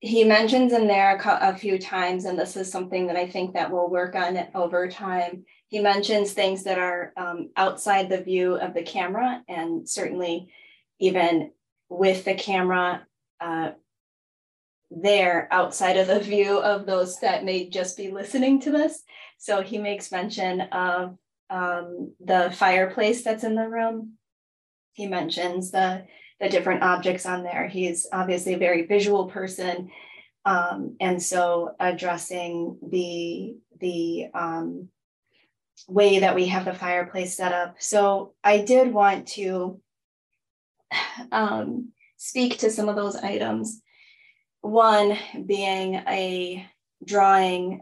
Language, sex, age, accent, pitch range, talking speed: English, female, 20-39, American, 180-205 Hz, 140 wpm